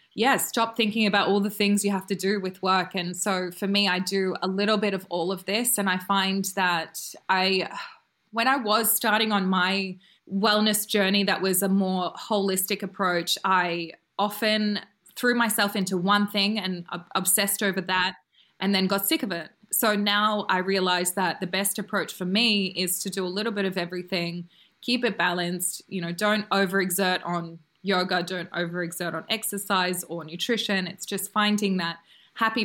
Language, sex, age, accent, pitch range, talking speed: English, female, 20-39, Australian, 185-205 Hz, 185 wpm